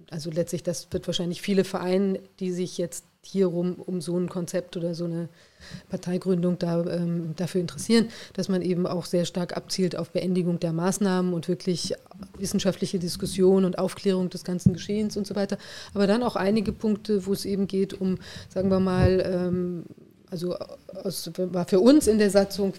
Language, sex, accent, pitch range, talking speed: German, female, German, 175-190 Hz, 180 wpm